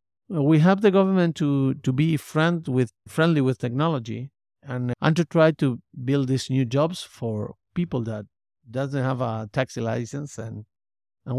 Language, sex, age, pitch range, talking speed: English, male, 50-69, 110-145 Hz, 165 wpm